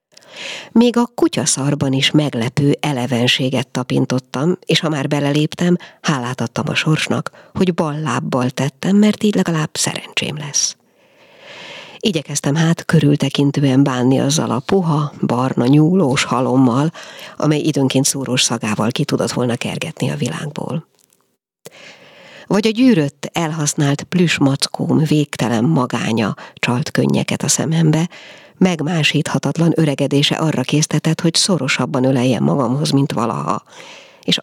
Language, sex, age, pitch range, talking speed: Hungarian, female, 50-69, 135-170 Hz, 115 wpm